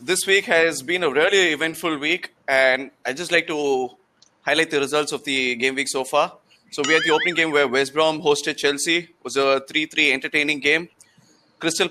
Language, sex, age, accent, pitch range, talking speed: English, male, 20-39, Indian, 140-160 Hz, 200 wpm